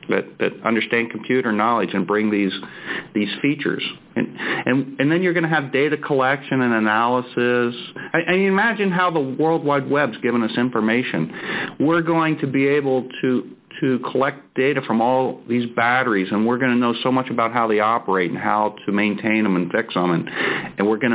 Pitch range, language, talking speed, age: 110-150 Hz, English, 205 wpm, 50-69